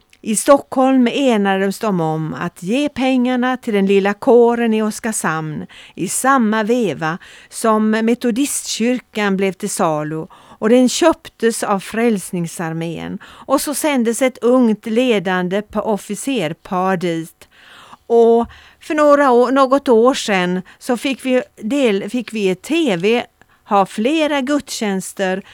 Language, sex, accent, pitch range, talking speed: Swedish, female, native, 195-255 Hz, 125 wpm